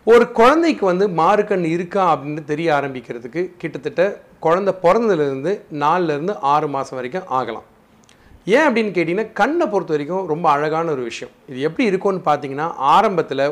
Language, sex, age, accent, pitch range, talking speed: Tamil, male, 40-59, native, 140-195 Hz, 145 wpm